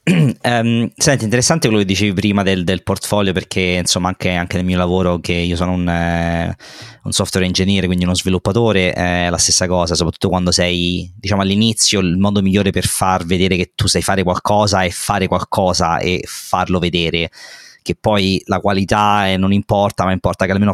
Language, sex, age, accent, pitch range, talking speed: Italian, male, 20-39, native, 90-100 Hz, 190 wpm